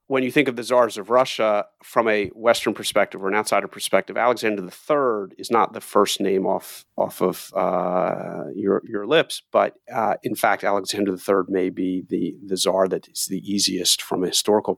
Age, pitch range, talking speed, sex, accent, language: 40-59, 95-120 Hz, 205 wpm, male, American, English